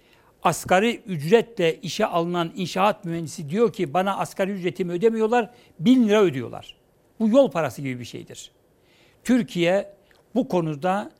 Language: Turkish